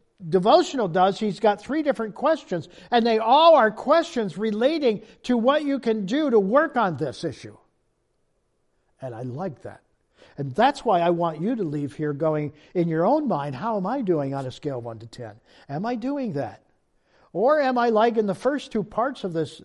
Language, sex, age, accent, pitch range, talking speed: English, male, 50-69, American, 155-230 Hz, 200 wpm